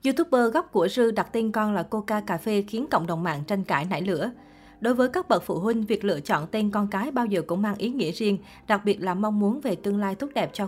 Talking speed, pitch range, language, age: 275 wpm, 185-230 Hz, Vietnamese, 20-39